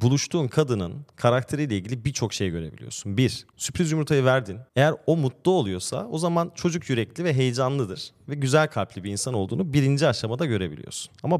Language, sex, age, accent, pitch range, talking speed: Turkish, male, 30-49, native, 110-145 Hz, 165 wpm